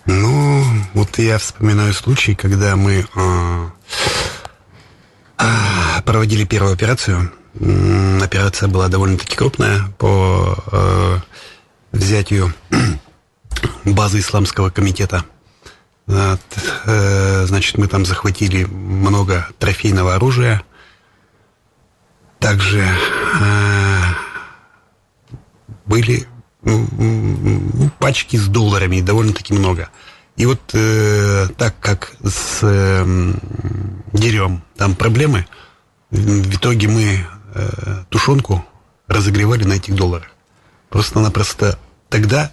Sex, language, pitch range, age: male, Russian, 95-110 Hz, 30-49